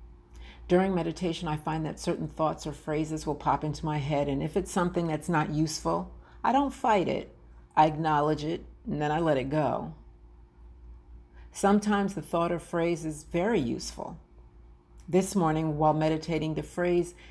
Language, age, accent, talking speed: English, 50-69, American, 165 wpm